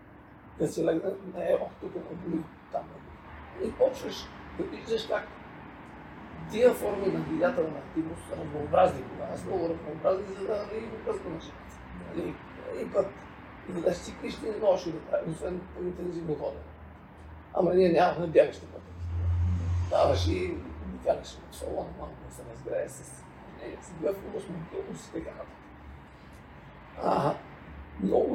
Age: 50-69